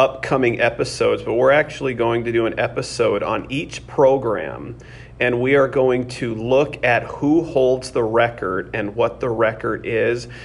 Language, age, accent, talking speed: English, 40-59, American, 165 wpm